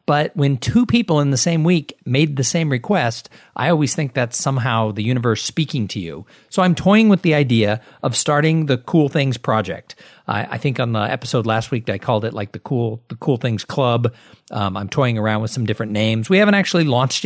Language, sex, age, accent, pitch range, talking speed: English, male, 50-69, American, 120-155 Hz, 225 wpm